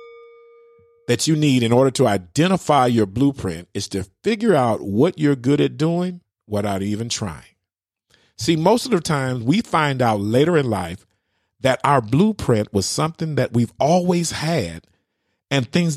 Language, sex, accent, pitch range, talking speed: English, male, American, 105-155 Hz, 160 wpm